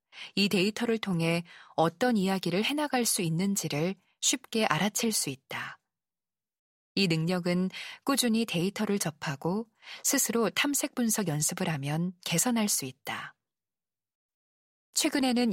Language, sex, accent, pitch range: Korean, female, native, 165-220 Hz